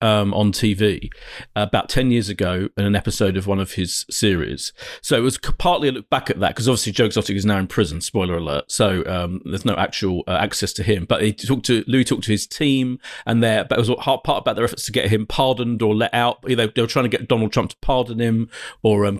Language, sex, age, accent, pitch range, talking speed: English, male, 40-59, British, 105-135 Hz, 265 wpm